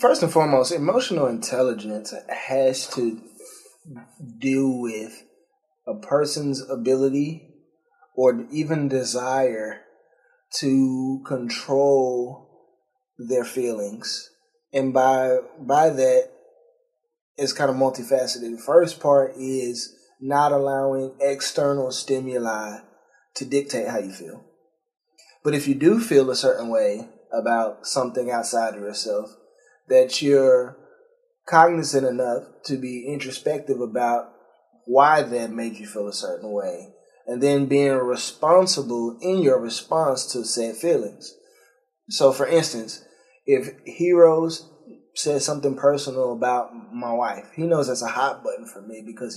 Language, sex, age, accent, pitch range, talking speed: English, male, 20-39, American, 125-165 Hz, 120 wpm